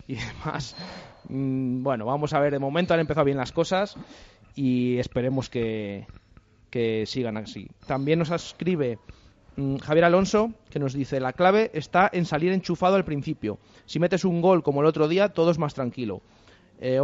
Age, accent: 30-49, Spanish